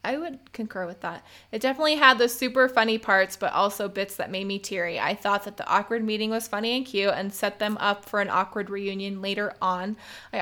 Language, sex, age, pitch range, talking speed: English, female, 20-39, 190-220 Hz, 230 wpm